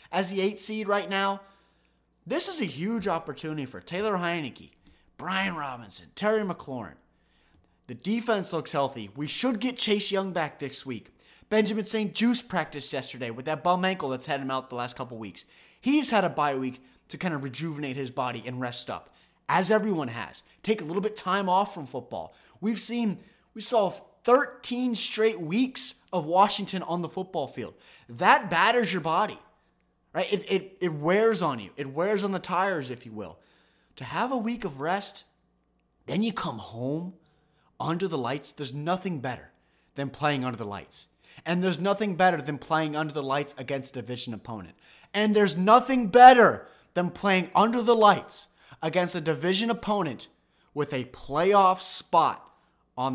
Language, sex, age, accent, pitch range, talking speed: English, male, 20-39, American, 140-210 Hz, 175 wpm